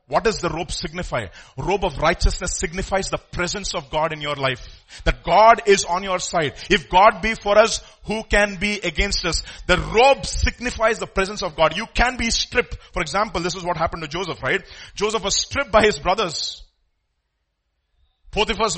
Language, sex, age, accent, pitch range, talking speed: English, male, 40-59, Indian, 135-225 Hz, 190 wpm